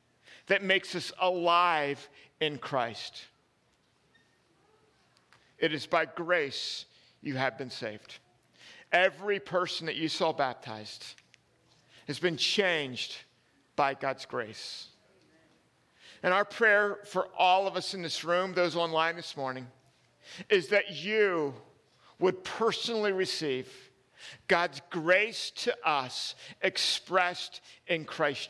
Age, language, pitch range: 50-69, English, 145-195 Hz